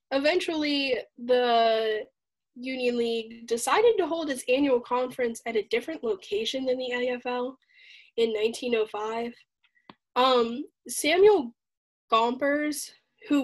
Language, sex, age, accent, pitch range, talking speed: English, female, 10-29, American, 235-295 Hz, 105 wpm